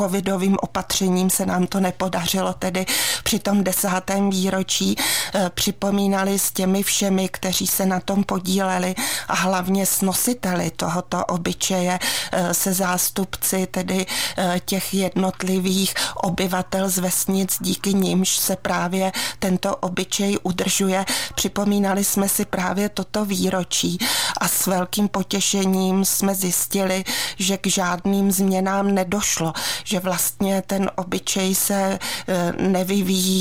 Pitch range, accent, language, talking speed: 185-195 Hz, native, Czech, 120 wpm